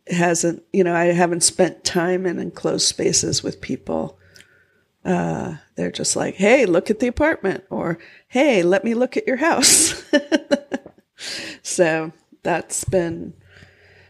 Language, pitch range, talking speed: English, 150-190 Hz, 135 wpm